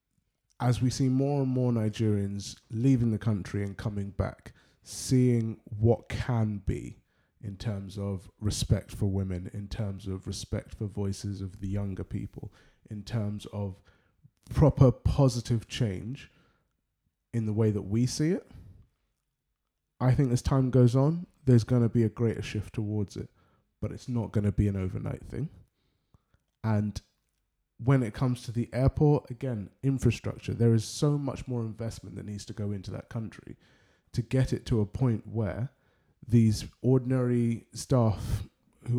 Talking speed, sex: 155 wpm, male